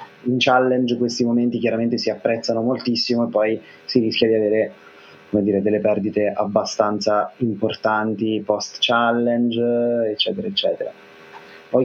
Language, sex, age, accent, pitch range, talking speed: Italian, male, 20-39, native, 105-115 Hz, 125 wpm